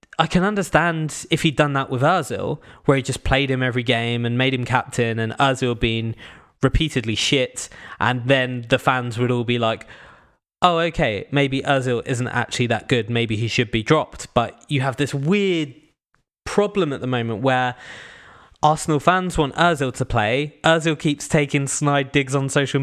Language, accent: English, British